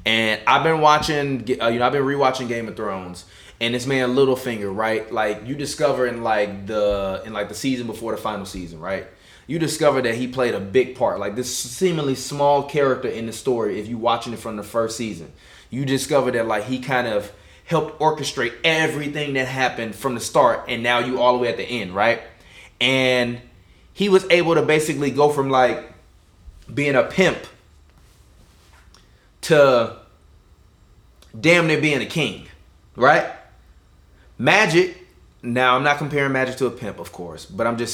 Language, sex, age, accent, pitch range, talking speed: English, male, 20-39, American, 100-135 Hz, 180 wpm